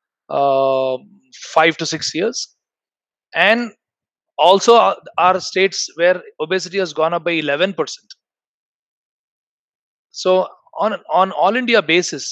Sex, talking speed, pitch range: male, 105 wpm, 145-180 Hz